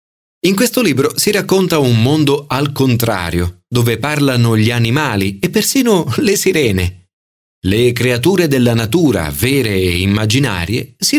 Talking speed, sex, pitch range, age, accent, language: 135 wpm, male, 100-155 Hz, 30-49, native, Italian